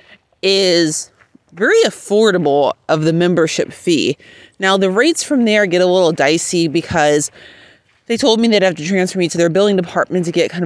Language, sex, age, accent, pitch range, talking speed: English, female, 30-49, American, 160-205 Hz, 180 wpm